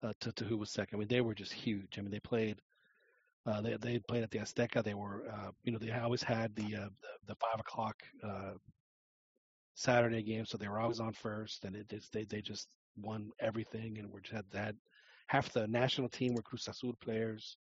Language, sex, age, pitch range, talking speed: English, male, 40-59, 105-120 Hz, 225 wpm